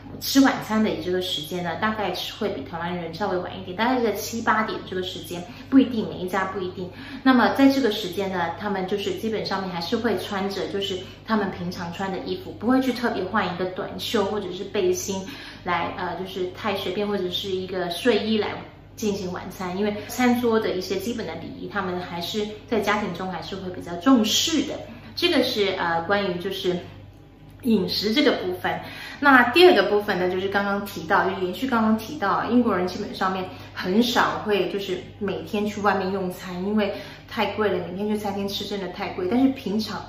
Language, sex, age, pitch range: Chinese, female, 20-39, 185-235 Hz